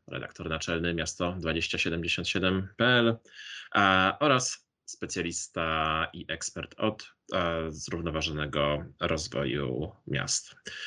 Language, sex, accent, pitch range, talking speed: Polish, male, native, 80-95 Hz, 60 wpm